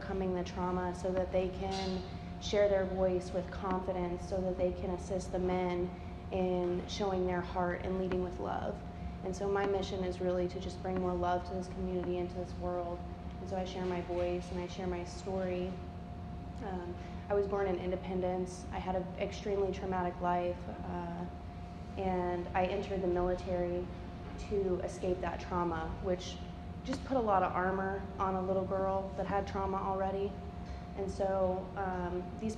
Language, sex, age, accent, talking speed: English, female, 20-39, American, 175 wpm